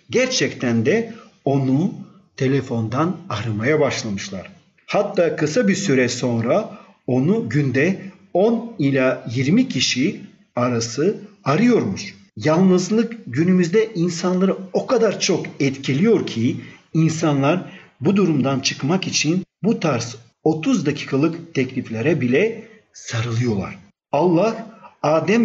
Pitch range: 135-195 Hz